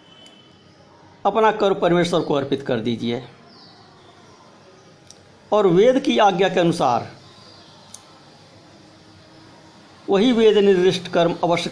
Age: 60-79